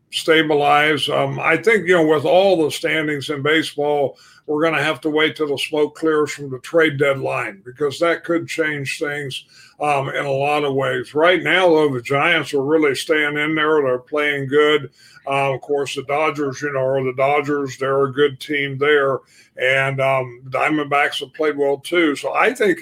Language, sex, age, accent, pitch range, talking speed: English, male, 50-69, American, 140-155 Hz, 195 wpm